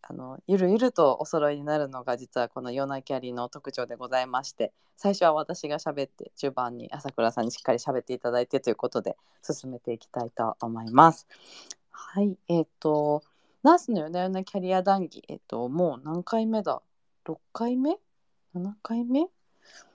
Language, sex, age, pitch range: Japanese, female, 20-39, 135-185 Hz